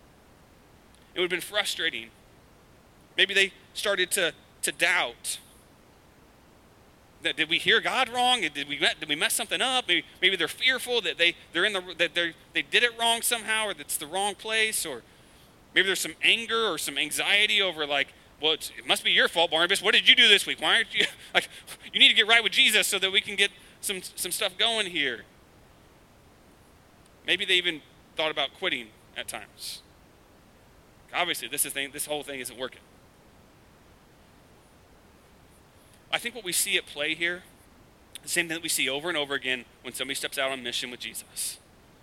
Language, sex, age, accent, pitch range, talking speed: English, male, 30-49, American, 140-205 Hz, 190 wpm